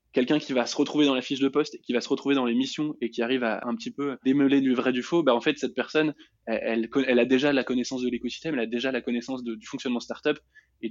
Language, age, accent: French, 20-39, French